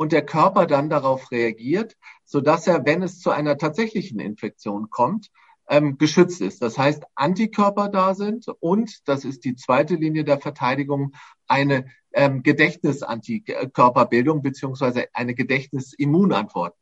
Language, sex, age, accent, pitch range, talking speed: German, male, 50-69, German, 125-175 Hz, 130 wpm